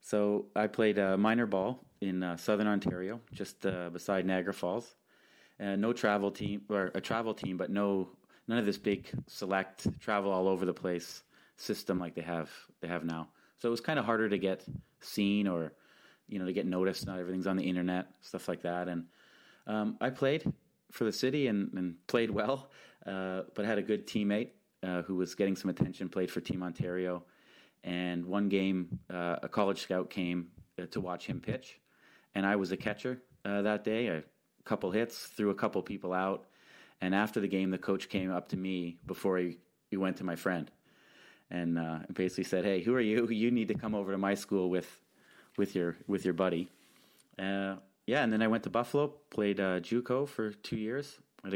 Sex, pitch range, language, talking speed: male, 90-105 Hz, English, 205 wpm